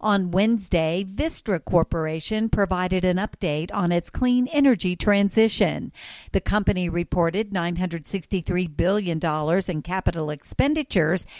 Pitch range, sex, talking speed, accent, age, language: 170-210 Hz, female, 105 wpm, American, 50-69, English